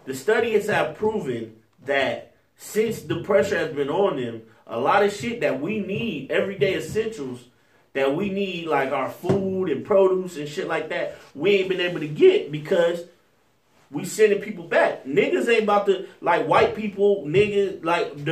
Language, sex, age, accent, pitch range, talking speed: English, male, 30-49, American, 165-225 Hz, 175 wpm